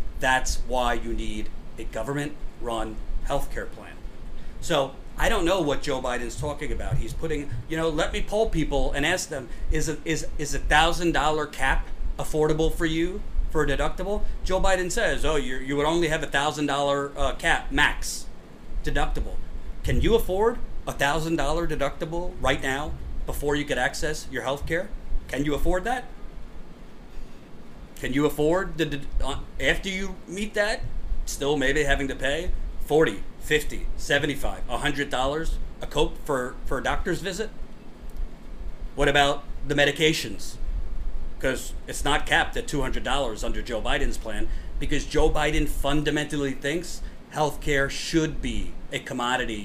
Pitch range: 110-155 Hz